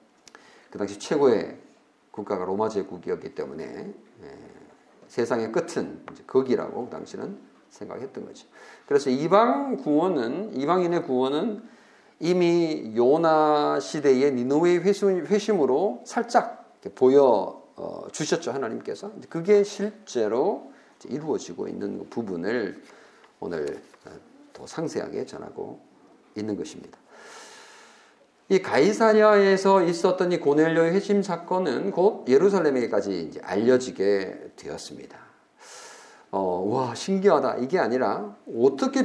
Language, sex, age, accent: Korean, male, 50-69, native